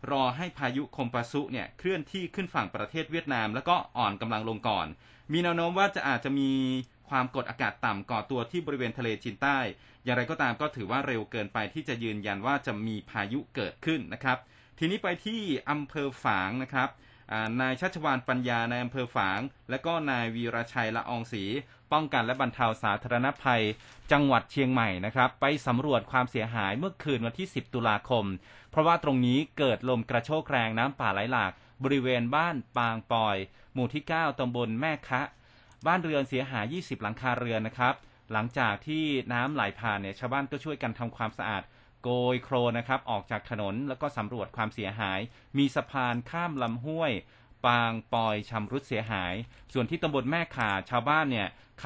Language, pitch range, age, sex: Thai, 115-140 Hz, 20-39, male